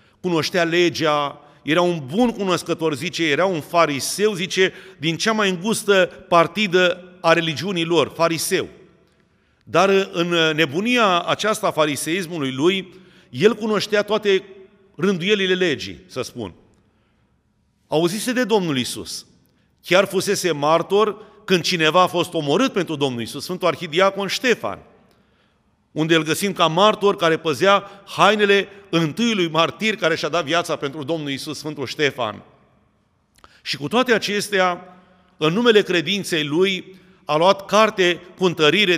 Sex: male